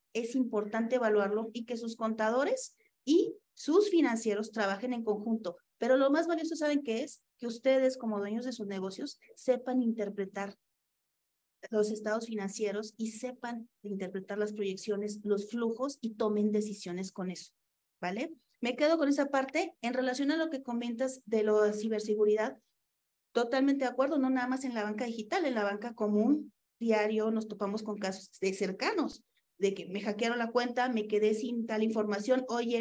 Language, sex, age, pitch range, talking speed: Spanish, female, 40-59, 205-255 Hz, 170 wpm